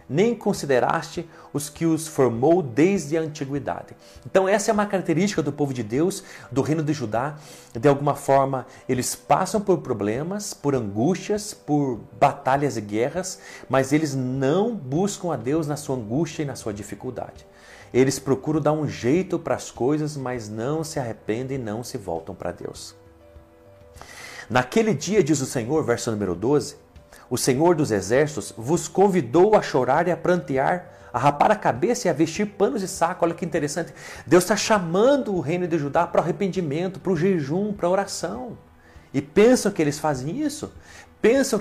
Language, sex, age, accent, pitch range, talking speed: Portuguese, male, 40-59, Brazilian, 125-185 Hz, 175 wpm